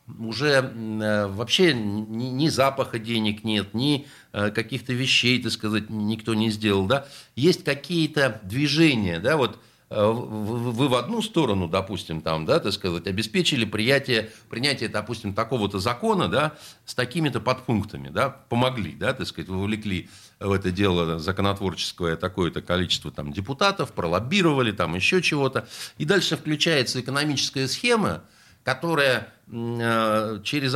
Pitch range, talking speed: 105-145 Hz, 135 wpm